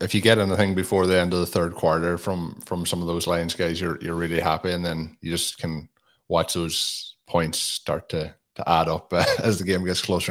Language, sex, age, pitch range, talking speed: English, male, 20-39, 85-100 Hz, 240 wpm